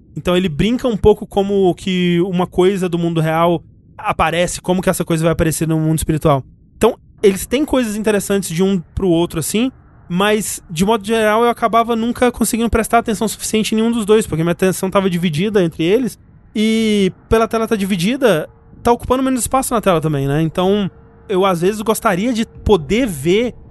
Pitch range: 165-215 Hz